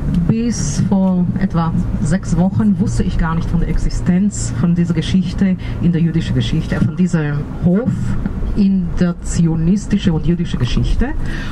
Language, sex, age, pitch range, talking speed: German, female, 50-69, 160-205 Hz, 145 wpm